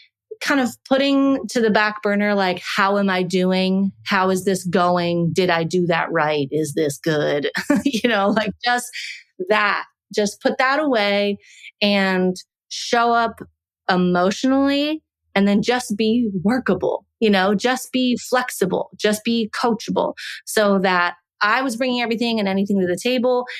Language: English